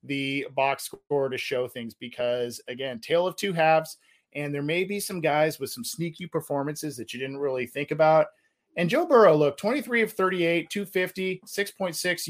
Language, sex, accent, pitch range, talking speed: English, male, American, 140-185 Hz, 175 wpm